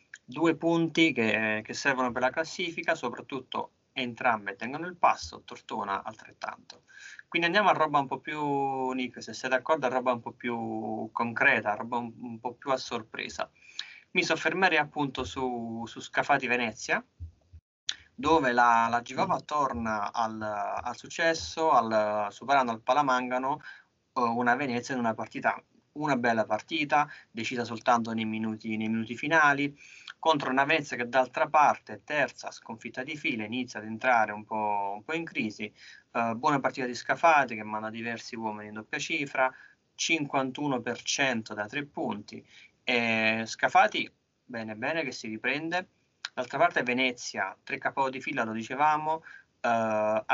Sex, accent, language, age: male, native, Italian, 20-39